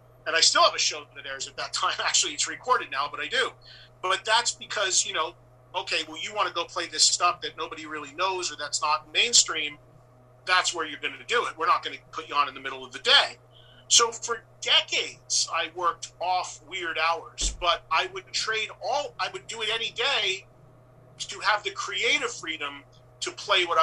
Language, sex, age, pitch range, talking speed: English, male, 40-59, 130-180 Hz, 220 wpm